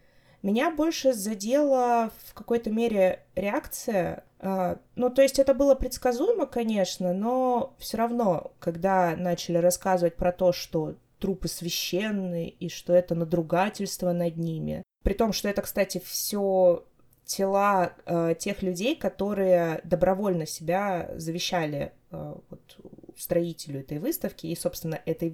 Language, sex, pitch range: Russian, female, 175-235 Hz